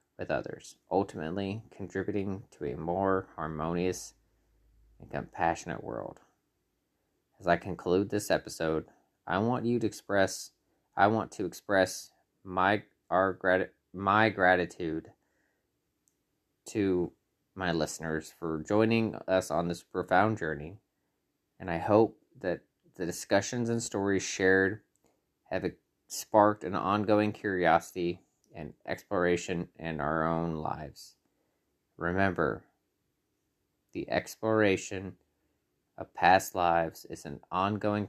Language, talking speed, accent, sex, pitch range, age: English, 105 wpm, American, male, 90-110 Hz, 20-39